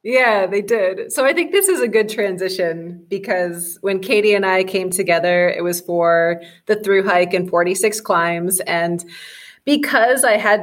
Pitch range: 175-215 Hz